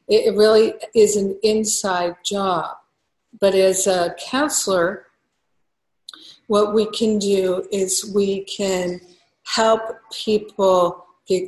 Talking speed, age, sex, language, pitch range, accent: 105 wpm, 50-69, female, English, 185-225 Hz, American